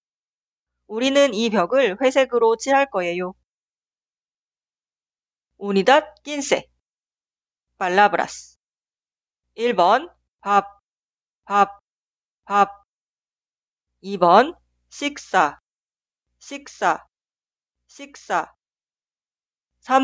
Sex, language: female, Korean